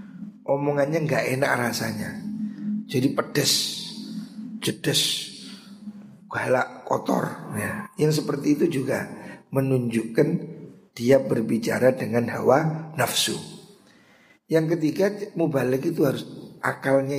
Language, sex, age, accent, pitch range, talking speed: Indonesian, male, 50-69, native, 135-180 Hz, 95 wpm